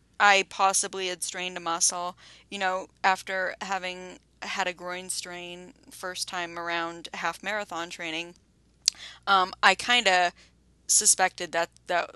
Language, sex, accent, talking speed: English, female, American, 135 wpm